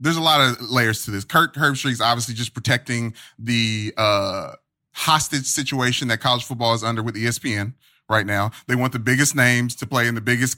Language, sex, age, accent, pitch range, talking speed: English, male, 30-49, American, 115-145 Hz, 200 wpm